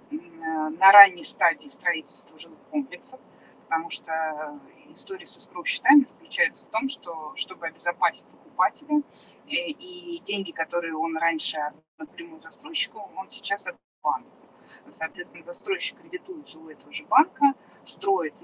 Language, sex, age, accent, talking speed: Russian, female, 20-39, native, 125 wpm